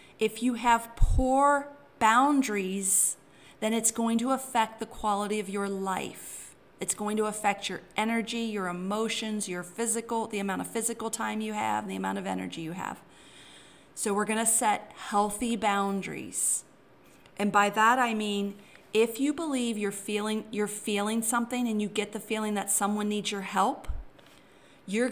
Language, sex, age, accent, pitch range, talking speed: English, female, 40-59, American, 200-235 Hz, 160 wpm